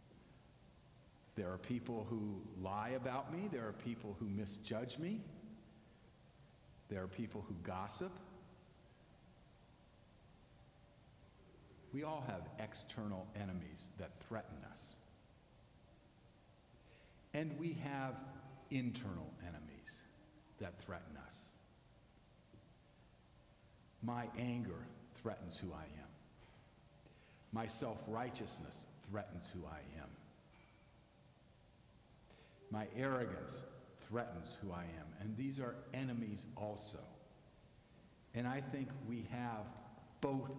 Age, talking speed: 50-69, 95 wpm